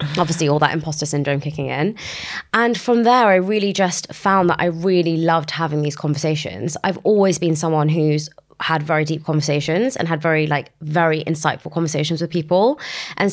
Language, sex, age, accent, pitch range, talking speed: English, female, 20-39, British, 150-190 Hz, 180 wpm